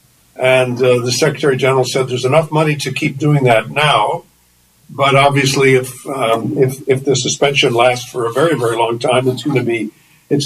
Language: English